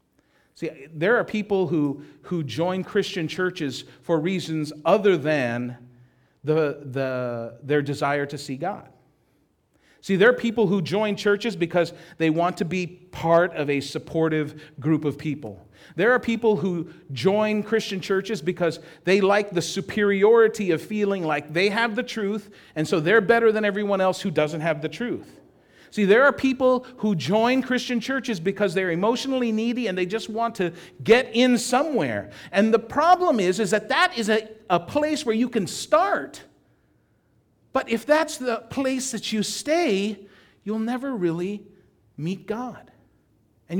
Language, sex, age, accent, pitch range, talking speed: English, male, 40-59, American, 170-230 Hz, 165 wpm